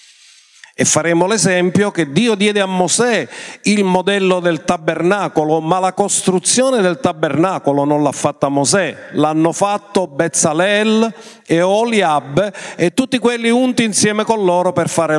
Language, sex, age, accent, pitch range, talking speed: Italian, male, 50-69, native, 170-225 Hz, 140 wpm